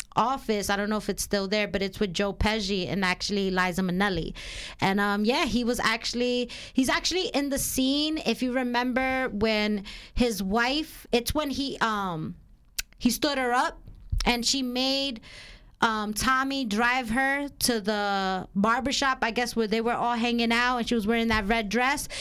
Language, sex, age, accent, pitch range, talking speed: English, female, 30-49, American, 210-260 Hz, 180 wpm